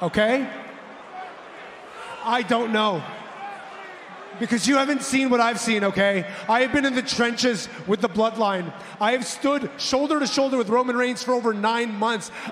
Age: 30-49